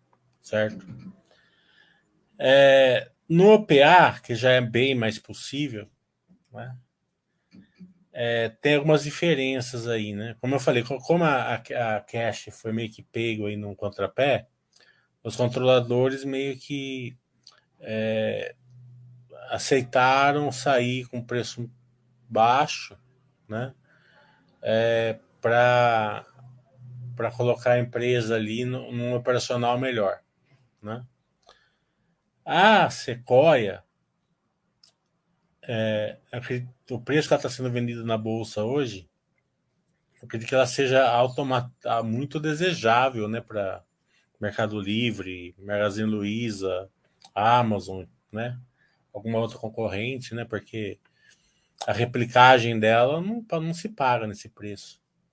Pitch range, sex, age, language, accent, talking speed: 110-130 Hz, male, 20-39, Portuguese, Brazilian, 105 wpm